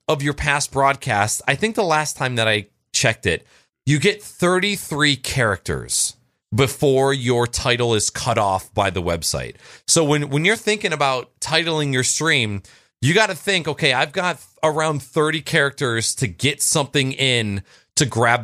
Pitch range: 115-160 Hz